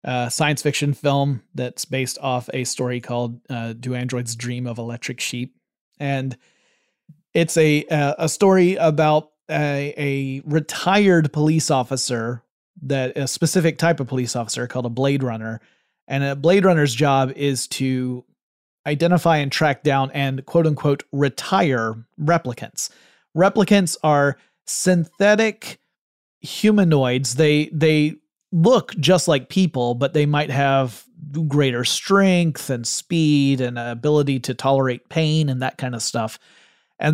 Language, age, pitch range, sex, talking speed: English, 30-49, 130-160 Hz, male, 135 wpm